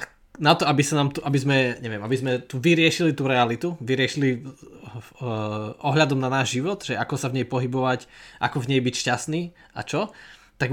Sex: male